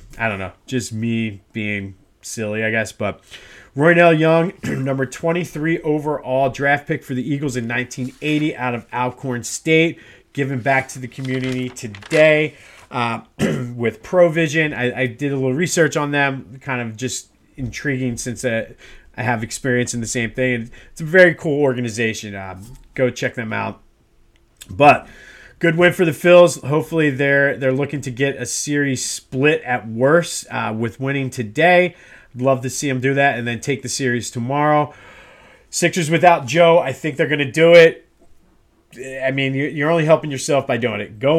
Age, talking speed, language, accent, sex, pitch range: 30-49, 175 wpm, English, American, male, 120-150 Hz